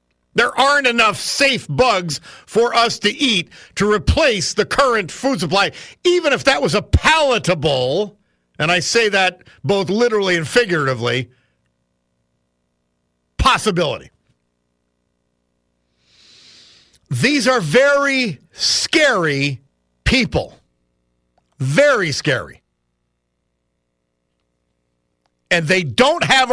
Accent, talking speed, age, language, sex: American, 95 wpm, 50-69, English, male